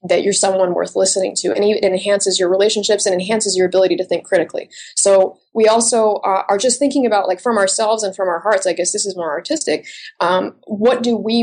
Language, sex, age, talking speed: English, female, 20-39, 220 wpm